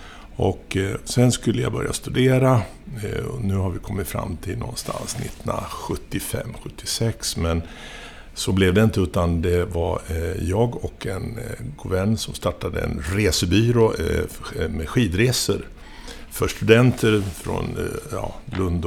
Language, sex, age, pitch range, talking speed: Swedish, male, 60-79, 85-110 Hz, 120 wpm